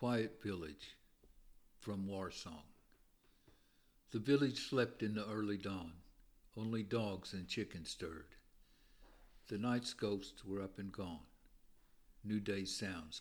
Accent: American